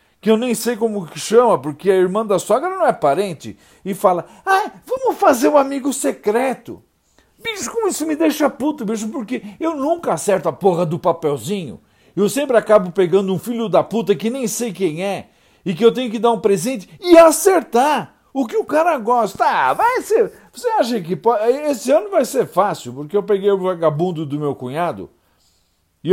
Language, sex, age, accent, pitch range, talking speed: Portuguese, male, 50-69, Brazilian, 180-245 Hz, 200 wpm